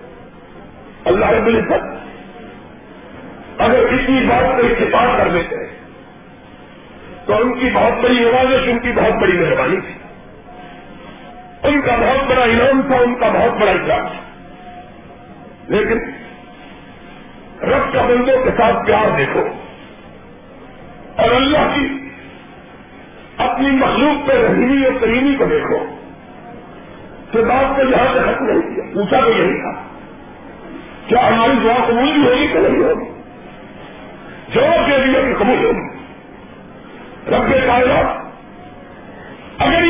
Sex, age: male, 50-69